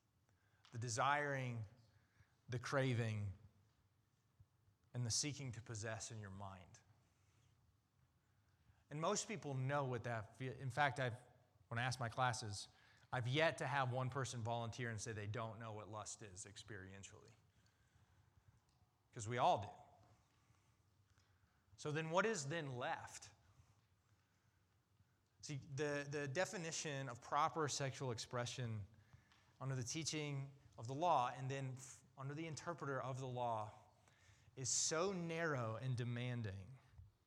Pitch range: 105-135 Hz